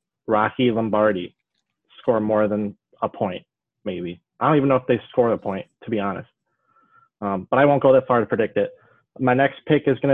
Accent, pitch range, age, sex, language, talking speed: American, 115-135 Hz, 20-39, male, English, 205 wpm